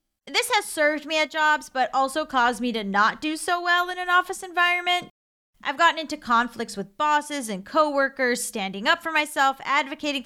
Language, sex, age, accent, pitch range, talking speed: English, female, 30-49, American, 235-310 Hz, 185 wpm